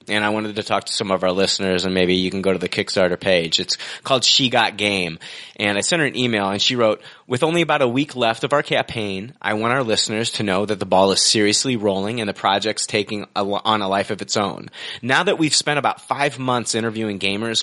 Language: English